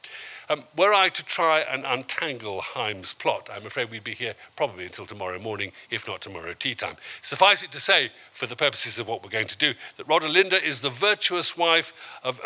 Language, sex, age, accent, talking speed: English, male, 50-69, British, 205 wpm